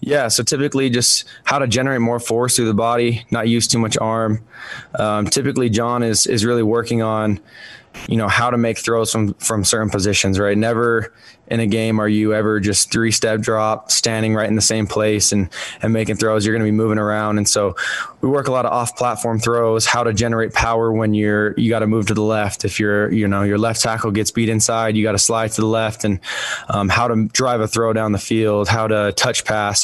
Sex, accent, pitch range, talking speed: male, American, 105-115 Hz, 230 wpm